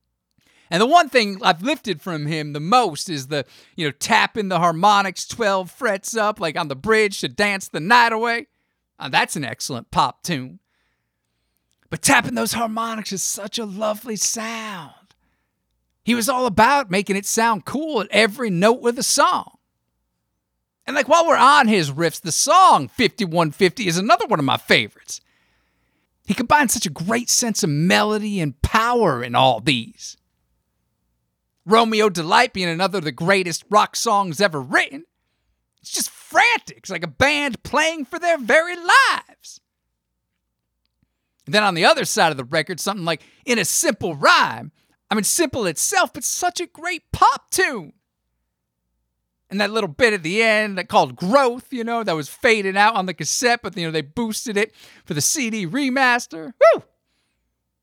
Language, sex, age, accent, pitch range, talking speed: English, male, 50-69, American, 150-235 Hz, 170 wpm